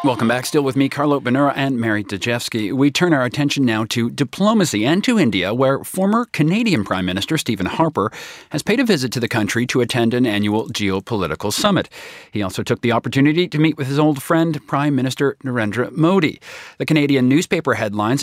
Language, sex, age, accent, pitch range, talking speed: English, male, 40-59, American, 110-145 Hz, 195 wpm